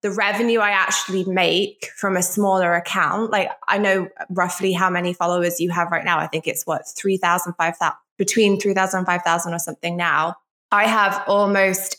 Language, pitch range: English, 185-225 Hz